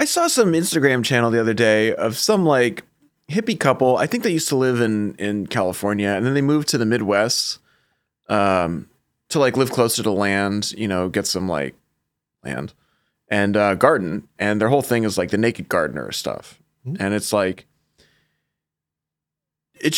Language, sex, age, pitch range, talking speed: English, male, 20-39, 105-150 Hz, 175 wpm